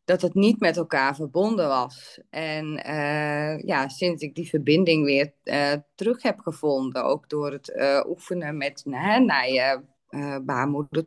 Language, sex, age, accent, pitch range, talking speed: Dutch, female, 20-39, Dutch, 150-205 Hz, 165 wpm